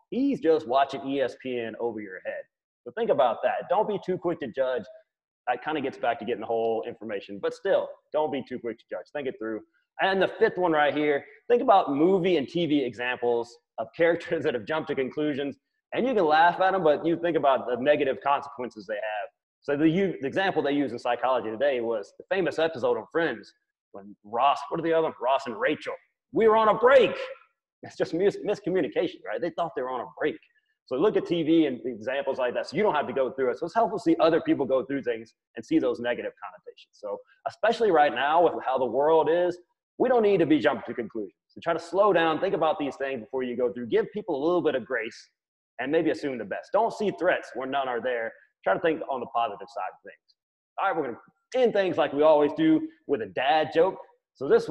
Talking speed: 240 wpm